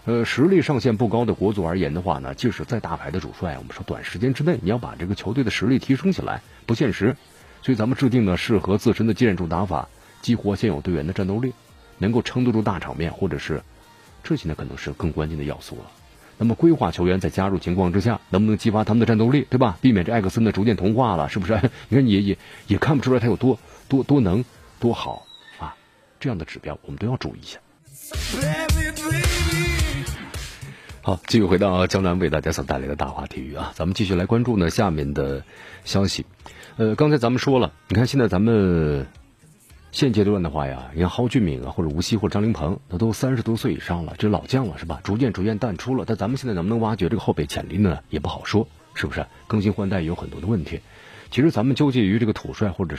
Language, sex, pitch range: Chinese, male, 85-120 Hz